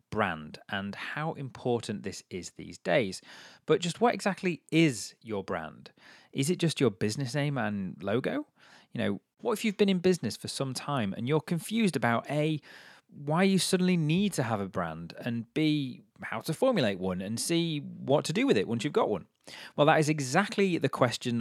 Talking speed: 195 wpm